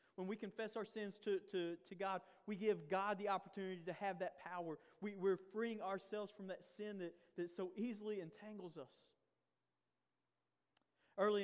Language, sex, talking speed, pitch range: English, male, 170 wpm, 150-180 Hz